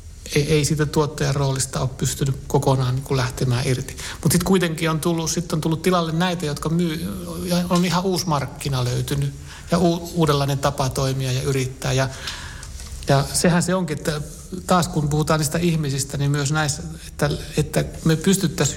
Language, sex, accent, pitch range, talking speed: Finnish, male, native, 130-160 Hz, 150 wpm